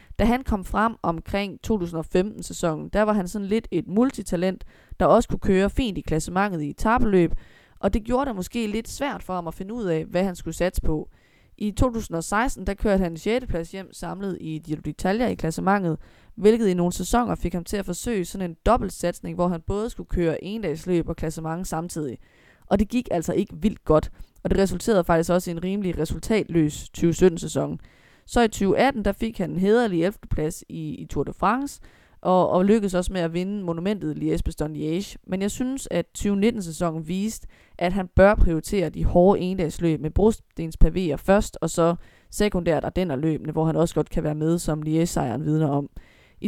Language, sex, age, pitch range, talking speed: Danish, female, 20-39, 165-210 Hz, 195 wpm